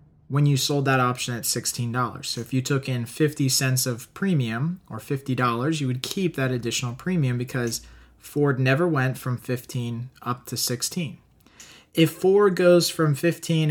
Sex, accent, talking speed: male, American, 165 wpm